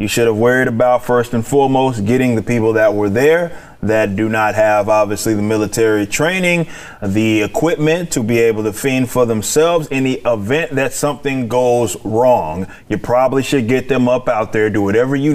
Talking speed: 190 wpm